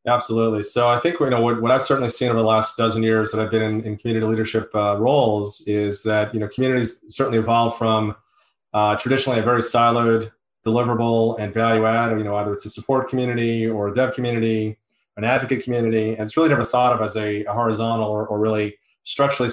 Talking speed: 215 wpm